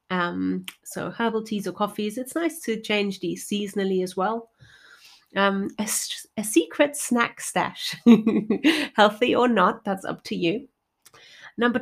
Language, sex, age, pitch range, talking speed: English, female, 30-49, 180-230 Hz, 140 wpm